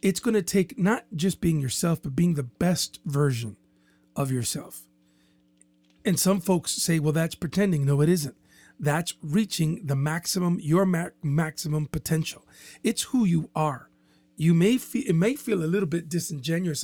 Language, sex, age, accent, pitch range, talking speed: English, male, 40-59, American, 145-185 Hz, 165 wpm